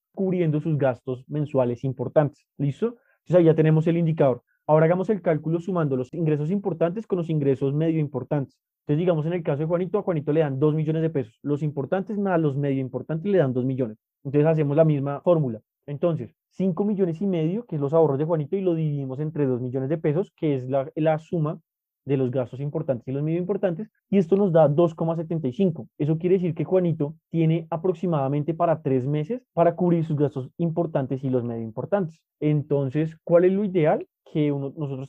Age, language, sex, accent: 20-39, Spanish, male, Colombian